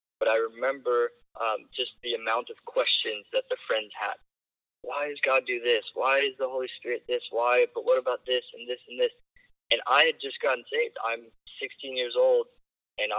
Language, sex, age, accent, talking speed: English, male, 20-39, American, 200 wpm